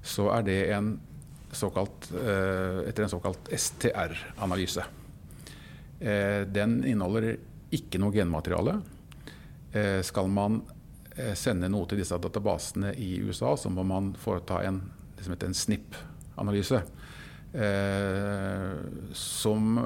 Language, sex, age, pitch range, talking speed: English, male, 50-69, 90-105 Hz, 90 wpm